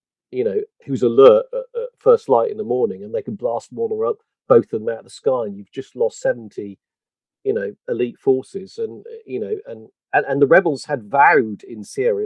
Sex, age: male, 40-59